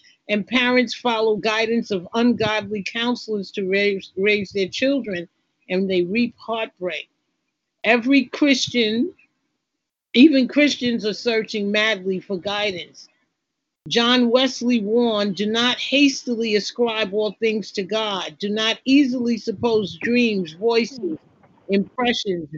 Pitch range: 205-245 Hz